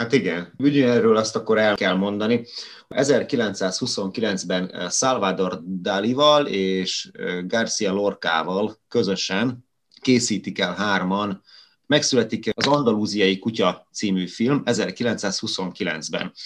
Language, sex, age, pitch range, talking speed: Hungarian, male, 30-49, 100-130 Hz, 90 wpm